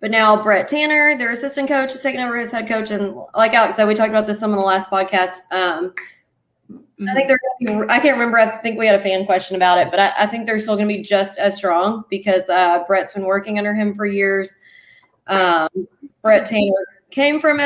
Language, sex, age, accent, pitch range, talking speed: English, female, 20-39, American, 190-235 Hz, 230 wpm